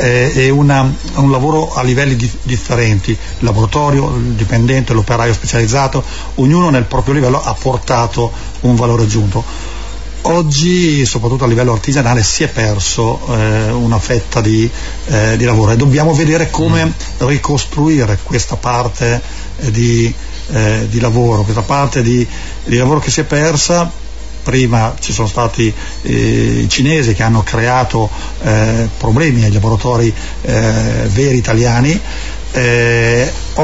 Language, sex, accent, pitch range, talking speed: Italian, male, native, 110-135 Hz, 130 wpm